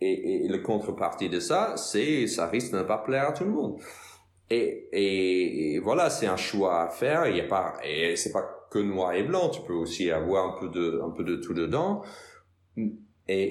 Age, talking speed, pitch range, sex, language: 30-49, 225 wpm, 85-110 Hz, male, French